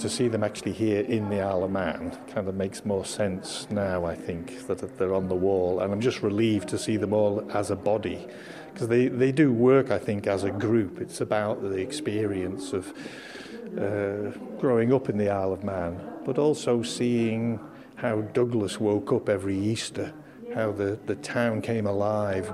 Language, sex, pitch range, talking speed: English, male, 100-115 Hz, 190 wpm